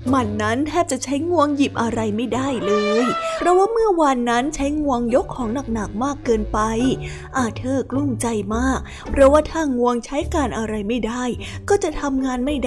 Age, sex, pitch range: 20-39, female, 235-295 Hz